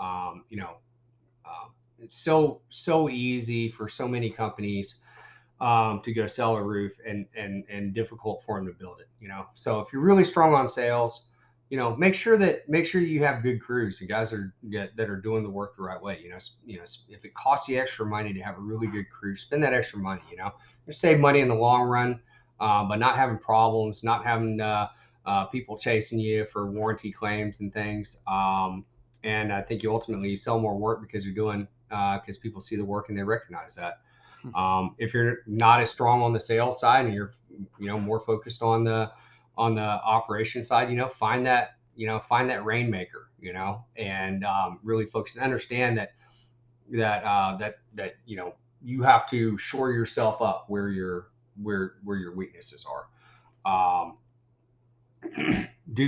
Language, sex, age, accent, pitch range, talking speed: English, male, 30-49, American, 105-120 Hz, 200 wpm